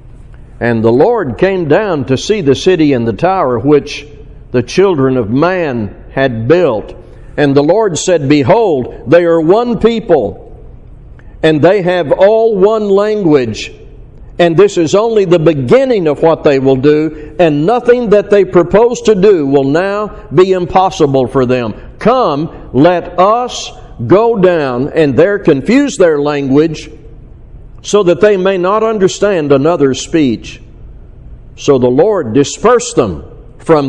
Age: 60-79